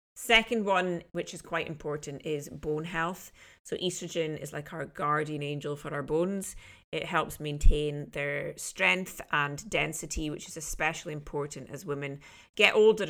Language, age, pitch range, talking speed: English, 30-49, 150-175 Hz, 155 wpm